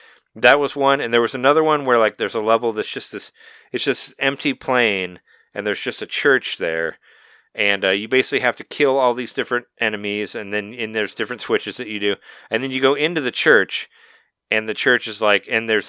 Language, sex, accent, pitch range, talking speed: English, male, American, 105-150 Hz, 225 wpm